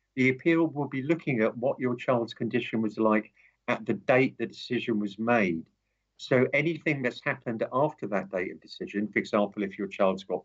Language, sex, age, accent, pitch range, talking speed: English, male, 50-69, British, 105-125 Hz, 195 wpm